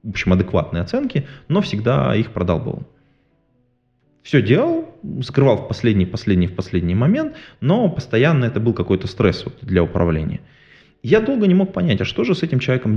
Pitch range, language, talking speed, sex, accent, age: 90-130 Hz, Russian, 170 wpm, male, native, 20-39